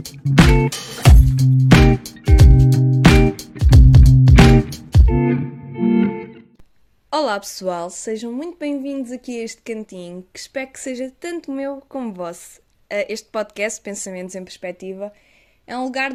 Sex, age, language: female, 20-39, Portuguese